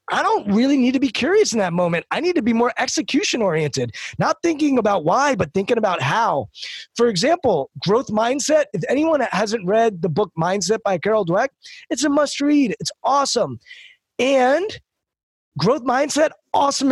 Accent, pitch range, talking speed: American, 175-270 Hz, 175 wpm